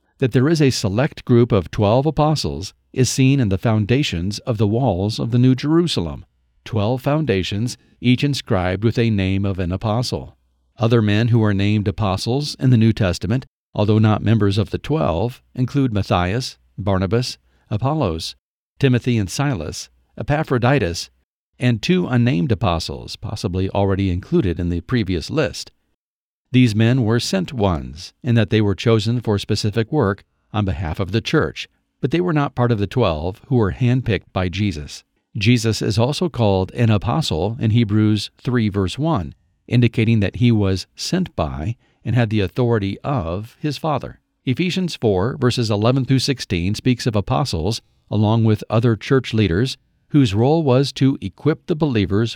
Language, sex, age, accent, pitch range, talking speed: English, male, 50-69, American, 100-130 Hz, 165 wpm